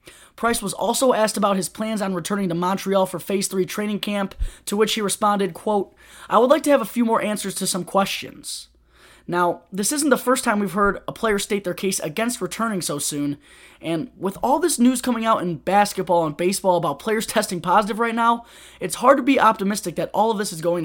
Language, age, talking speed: English, 20-39, 225 wpm